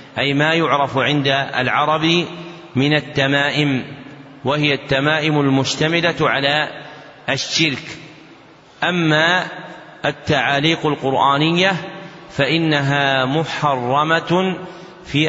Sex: male